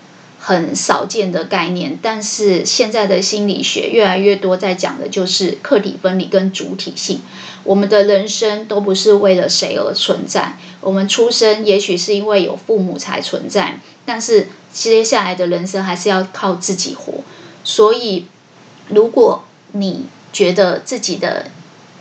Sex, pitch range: female, 190-215 Hz